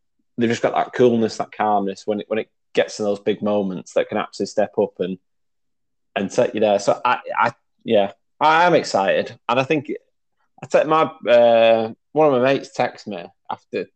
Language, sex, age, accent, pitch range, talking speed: English, male, 20-39, British, 105-135 Hz, 200 wpm